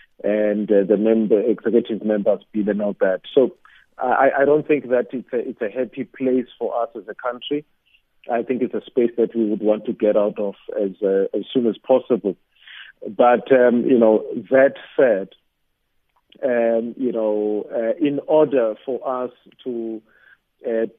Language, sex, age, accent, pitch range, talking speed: English, male, 50-69, South African, 110-125 Hz, 175 wpm